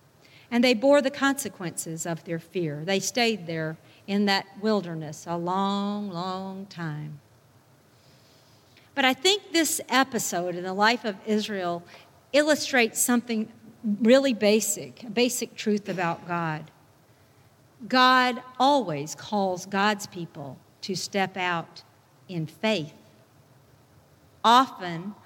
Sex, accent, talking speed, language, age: female, American, 115 wpm, English, 50-69